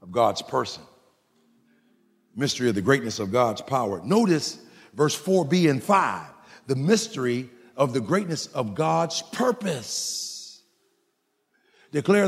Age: 50-69